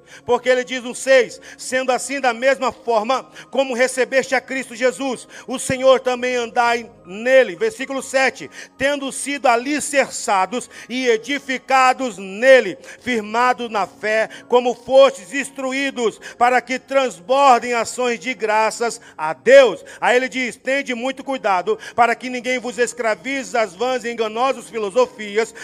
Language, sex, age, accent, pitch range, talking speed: Portuguese, male, 50-69, Brazilian, 225-260 Hz, 140 wpm